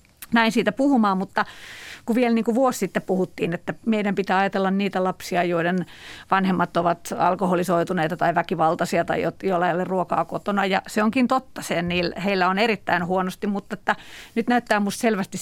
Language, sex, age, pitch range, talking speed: Finnish, female, 40-59, 185-235 Hz, 170 wpm